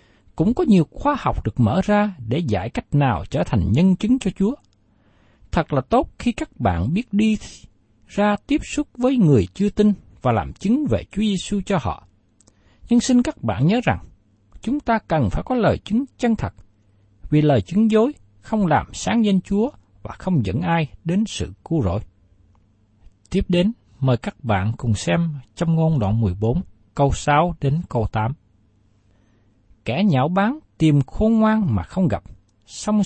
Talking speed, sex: 180 wpm, male